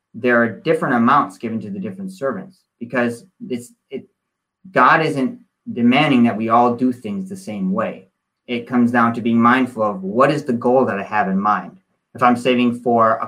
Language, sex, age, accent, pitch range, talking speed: English, male, 30-49, American, 115-140 Hz, 190 wpm